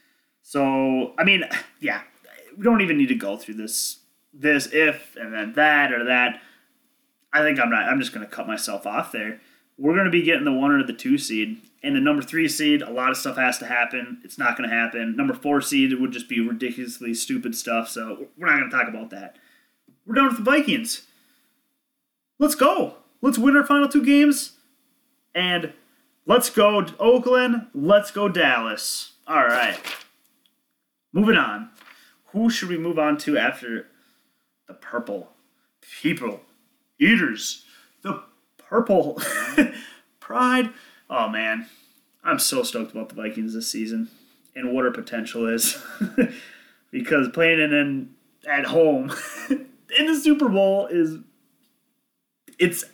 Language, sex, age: English, male, 30-49